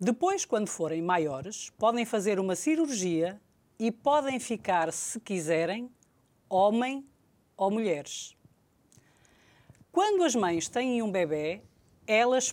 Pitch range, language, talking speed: 180-275 Hz, Portuguese, 110 wpm